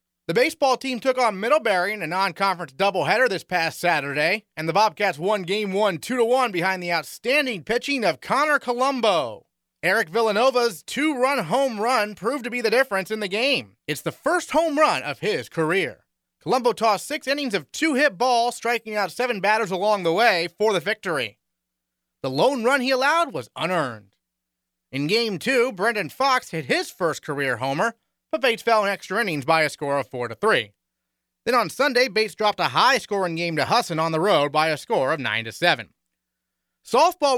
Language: English